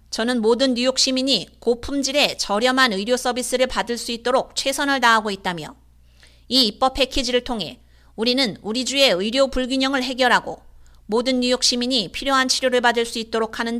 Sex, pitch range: female, 215-260 Hz